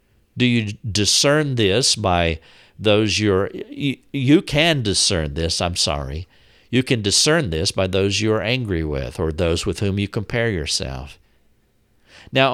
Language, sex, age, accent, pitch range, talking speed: English, male, 50-69, American, 95-125 Hz, 150 wpm